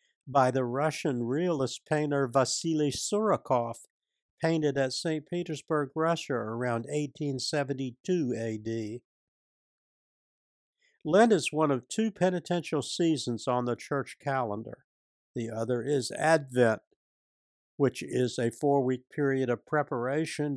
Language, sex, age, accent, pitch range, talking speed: English, male, 60-79, American, 125-160 Hz, 110 wpm